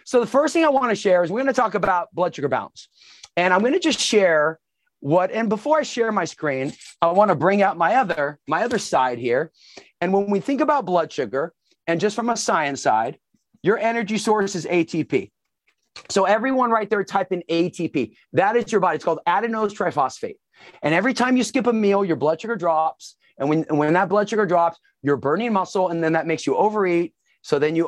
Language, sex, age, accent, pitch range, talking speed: English, male, 40-59, American, 165-235 Hz, 225 wpm